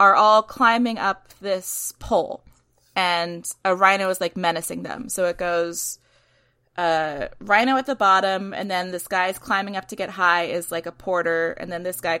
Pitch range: 170-215 Hz